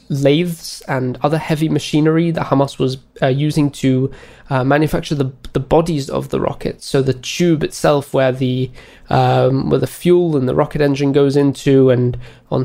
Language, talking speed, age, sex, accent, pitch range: English, 175 wpm, 20-39, male, British, 130-150 Hz